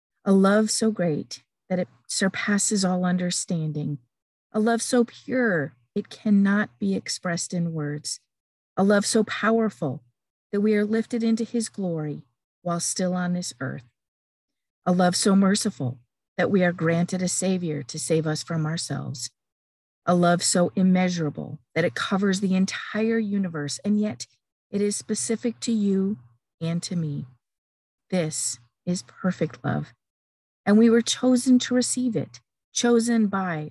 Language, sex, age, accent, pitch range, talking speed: English, female, 50-69, American, 150-210 Hz, 150 wpm